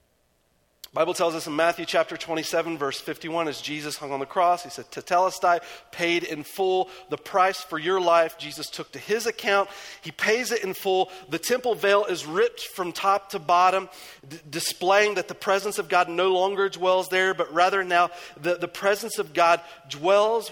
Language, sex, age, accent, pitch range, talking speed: English, male, 40-59, American, 170-210 Hz, 190 wpm